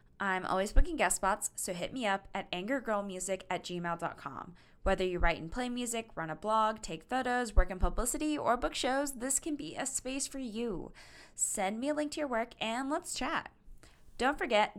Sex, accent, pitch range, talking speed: female, American, 175-245 Hz, 200 wpm